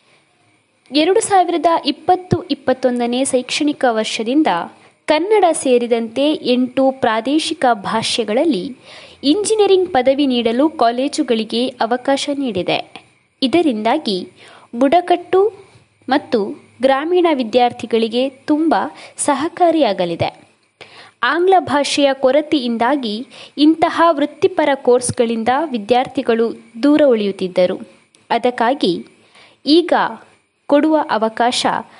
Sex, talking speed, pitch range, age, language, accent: female, 70 wpm, 245-315 Hz, 20-39, Kannada, native